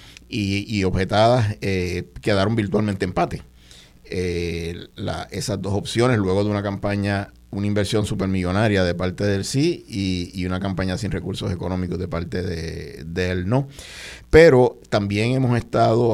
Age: 50-69